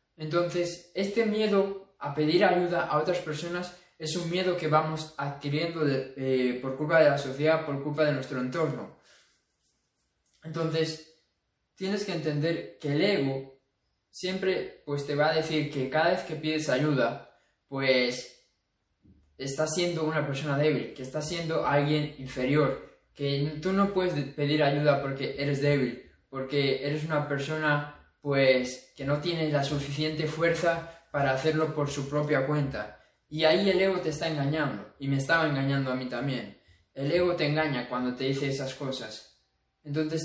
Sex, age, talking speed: male, 20-39, 155 wpm